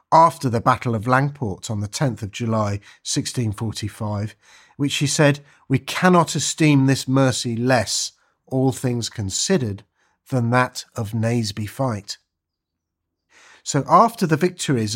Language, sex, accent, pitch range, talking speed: English, male, British, 110-155 Hz, 130 wpm